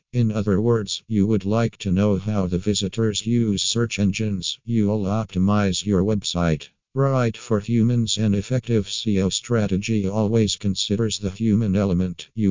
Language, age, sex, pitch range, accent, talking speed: English, 50-69, male, 95-110 Hz, American, 150 wpm